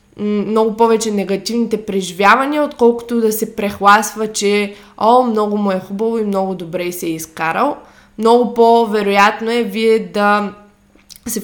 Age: 20-39